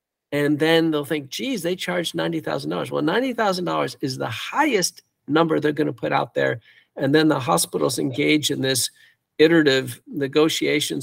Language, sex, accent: English, male, American